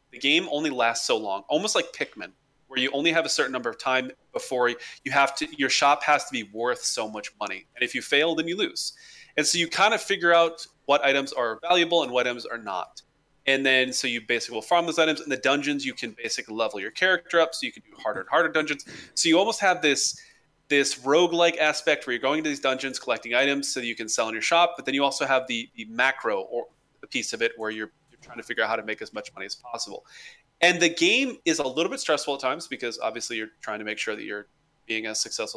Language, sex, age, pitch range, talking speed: English, male, 20-39, 130-170 Hz, 260 wpm